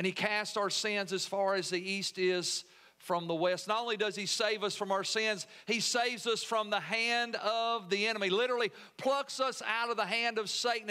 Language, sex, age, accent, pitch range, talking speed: English, male, 50-69, American, 195-230 Hz, 225 wpm